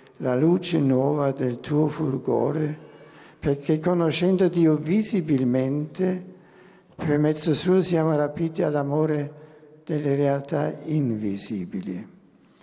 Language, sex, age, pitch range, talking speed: Italian, male, 60-79, 125-160 Hz, 90 wpm